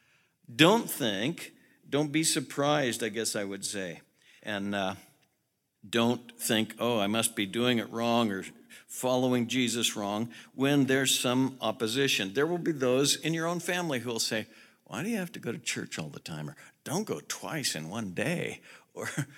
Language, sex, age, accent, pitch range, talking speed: English, male, 60-79, American, 105-140 Hz, 185 wpm